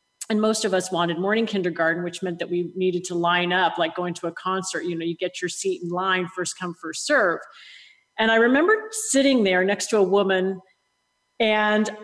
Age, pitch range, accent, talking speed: 40-59, 185-245 Hz, American, 210 wpm